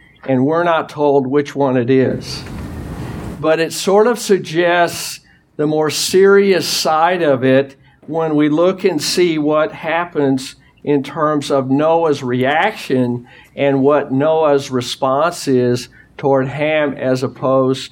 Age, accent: 50-69, American